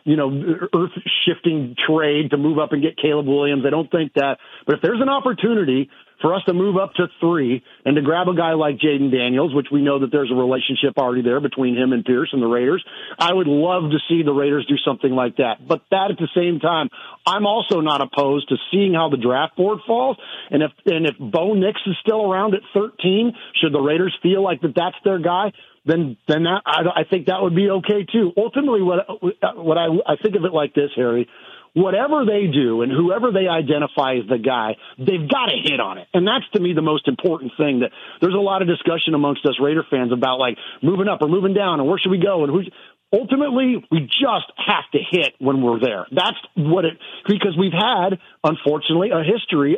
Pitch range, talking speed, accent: 145-190 Hz, 225 wpm, American